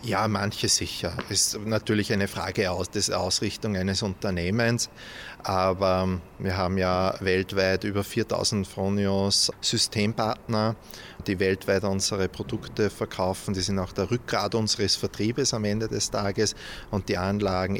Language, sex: German, male